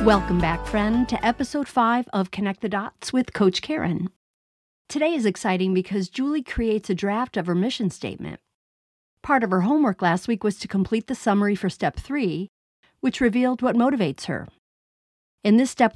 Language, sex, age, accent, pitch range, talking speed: English, female, 50-69, American, 180-230 Hz, 175 wpm